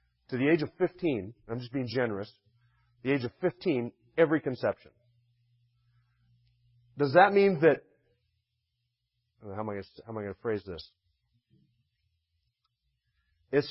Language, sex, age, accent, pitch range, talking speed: English, male, 40-59, American, 110-140 Hz, 140 wpm